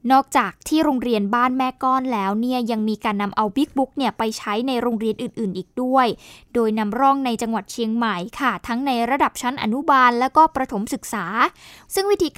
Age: 10-29